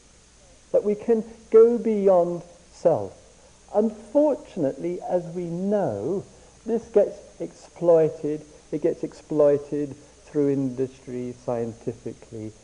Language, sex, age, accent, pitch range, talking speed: English, male, 50-69, British, 135-225 Hz, 90 wpm